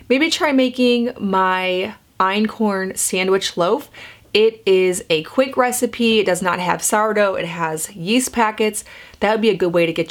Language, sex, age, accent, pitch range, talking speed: English, female, 30-49, American, 165-210 Hz, 170 wpm